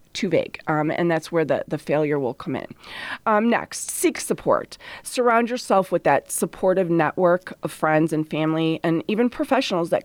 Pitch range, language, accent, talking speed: 160-200 Hz, English, American, 180 wpm